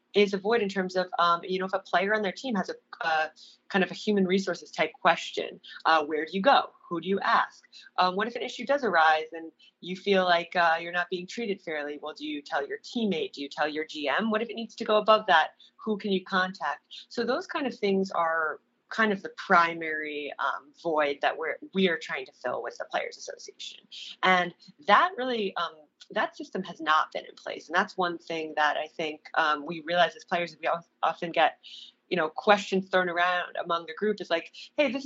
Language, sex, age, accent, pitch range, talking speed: English, female, 30-49, American, 160-210 Hz, 230 wpm